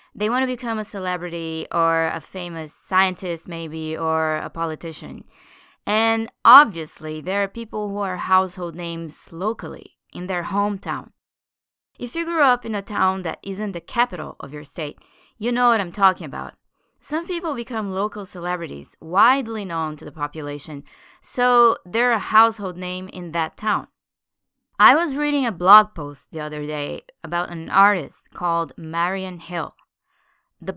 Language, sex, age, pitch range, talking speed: English, female, 20-39, 170-235 Hz, 160 wpm